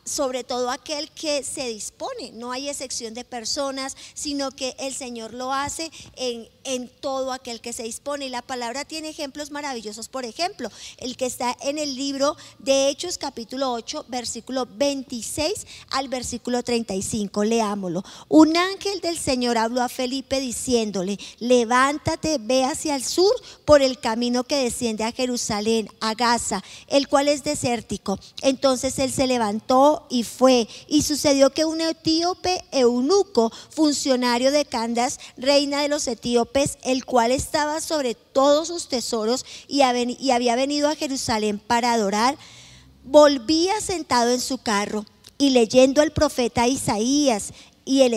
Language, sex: Spanish, male